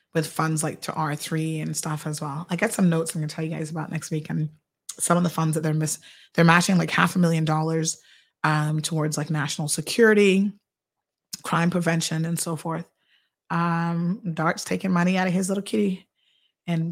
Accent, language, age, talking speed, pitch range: American, English, 30-49, 200 wpm, 160-180 Hz